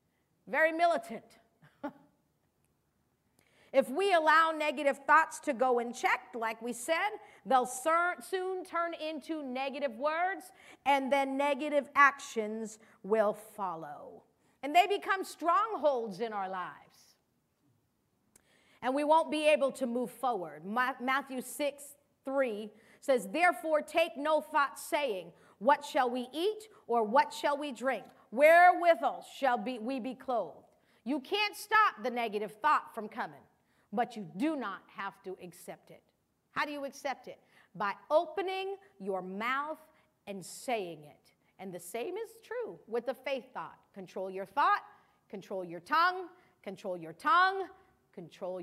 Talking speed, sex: 140 wpm, female